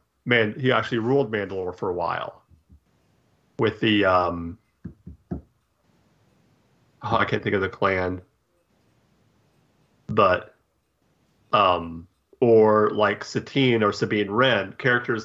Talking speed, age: 105 wpm, 40-59